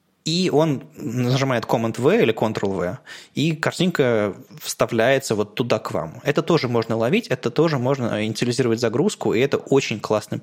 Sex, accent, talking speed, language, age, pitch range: male, native, 150 wpm, Russian, 20-39, 115-150 Hz